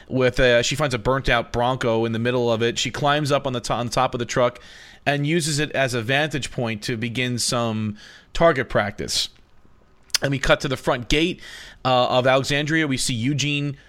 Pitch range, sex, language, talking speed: 120-155 Hz, male, English, 210 wpm